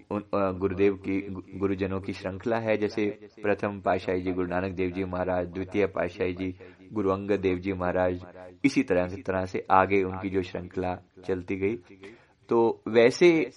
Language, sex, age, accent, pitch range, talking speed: Hindi, male, 30-49, native, 95-115 Hz, 160 wpm